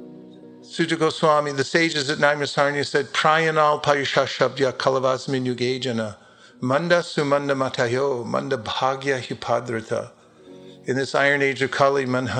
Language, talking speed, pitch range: English, 95 wpm, 125-160 Hz